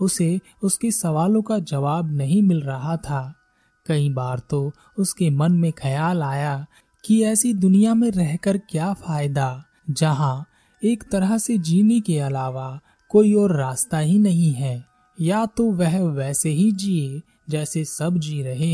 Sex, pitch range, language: male, 145-195 Hz, Hindi